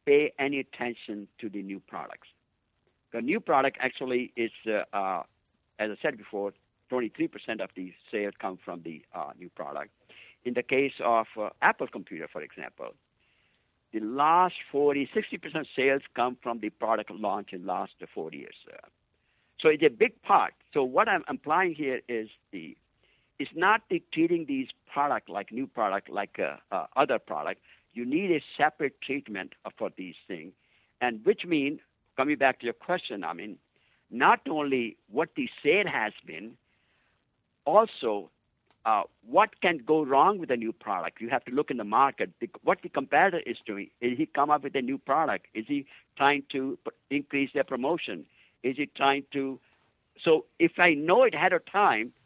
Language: English